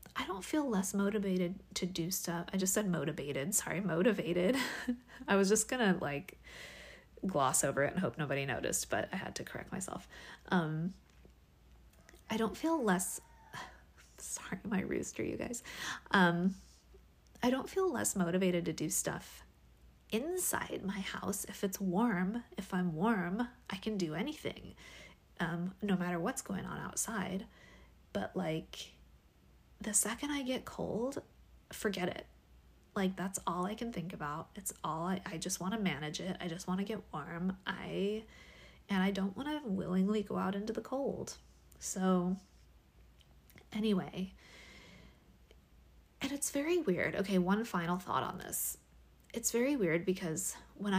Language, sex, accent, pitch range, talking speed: English, female, American, 145-205 Hz, 155 wpm